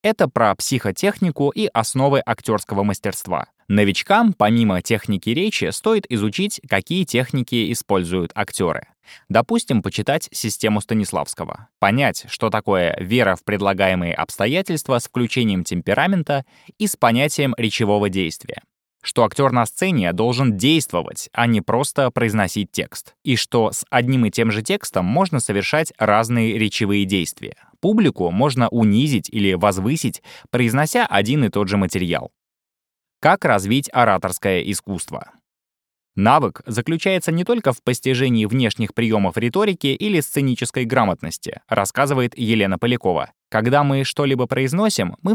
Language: Russian